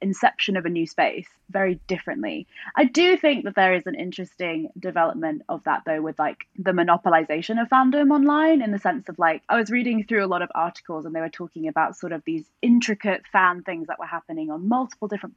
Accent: British